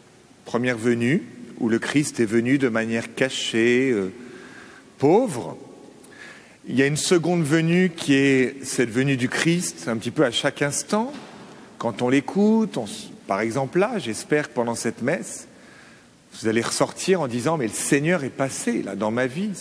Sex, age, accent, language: male, 40-59, French, French